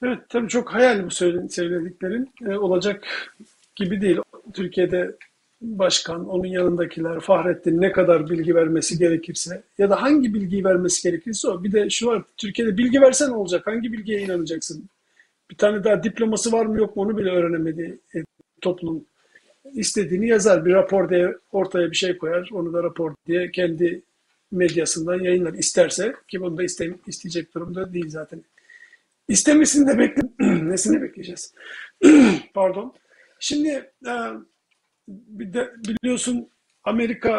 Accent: native